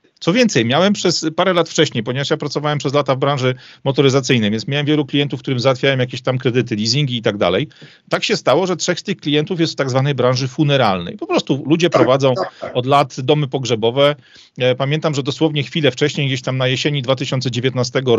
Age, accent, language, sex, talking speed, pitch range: 40-59, native, Polish, male, 200 wpm, 125-155 Hz